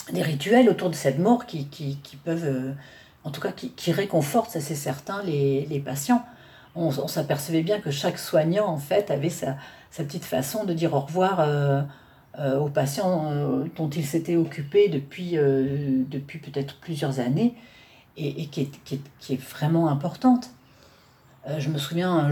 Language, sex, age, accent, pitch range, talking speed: French, female, 50-69, French, 140-180 Hz, 190 wpm